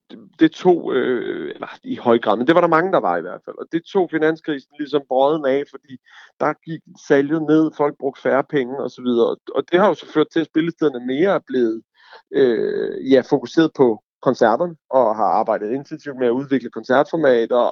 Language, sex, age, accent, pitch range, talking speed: Danish, male, 40-59, native, 135-175 Hz, 205 wpm